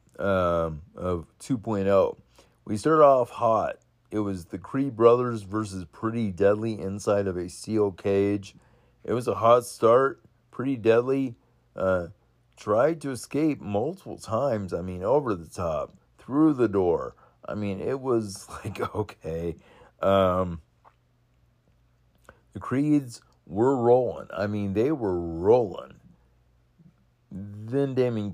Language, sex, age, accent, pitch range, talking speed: English, male, 50-69, American, 85-110 Hz, 125 wpm